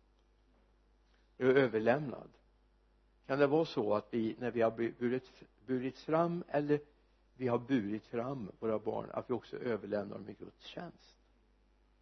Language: Swedish